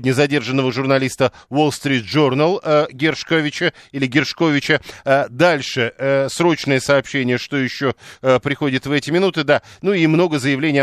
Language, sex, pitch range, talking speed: Russian, male, 130-160 Hz, 145 wpm